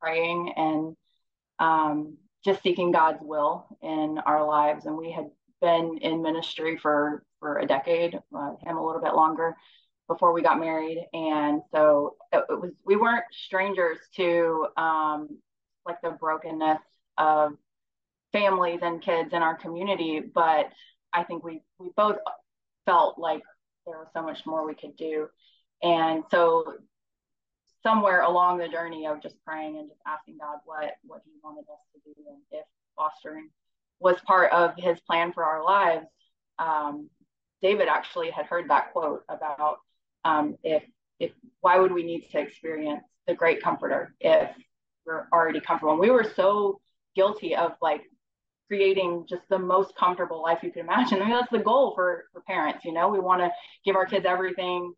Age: 20-39